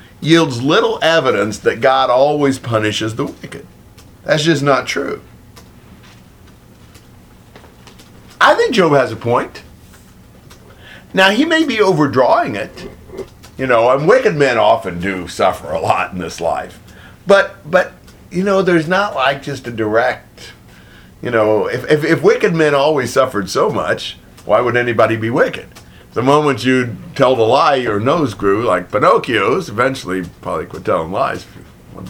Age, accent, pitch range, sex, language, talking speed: 50-69, American, 110-185 Hz, male, English, 155 wpm